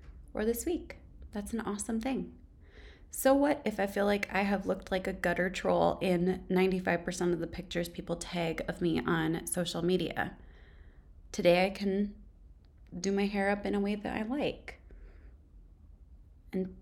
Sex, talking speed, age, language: female, 165 wpm, 20-39, English